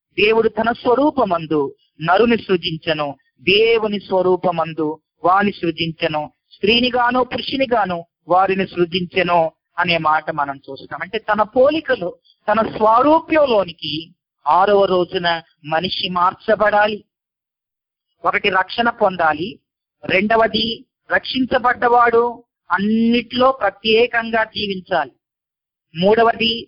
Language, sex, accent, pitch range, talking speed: Telugu, female, native, 165-230 Hz, 85 wpm